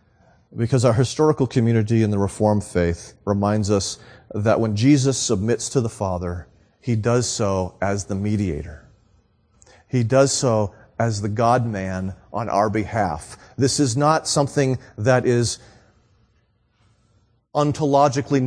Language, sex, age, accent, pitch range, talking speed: English, male, 40-59, American, 100-130 Hz, 125 wpm